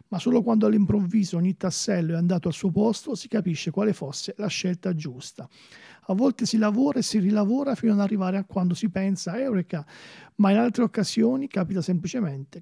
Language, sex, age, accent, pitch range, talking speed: Italian, male, 40-59, native, 175-205 Hz, 190 wpm